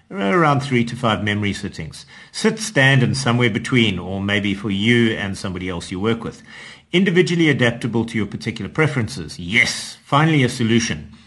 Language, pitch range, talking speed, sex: English, 105-140 Hz, 165 wpm, male